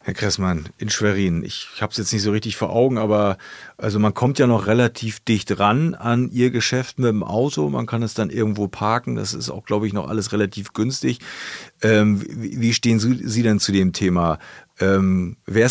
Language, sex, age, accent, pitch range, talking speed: German, male, 40-59, German, 100-120 Hz, 205 wpm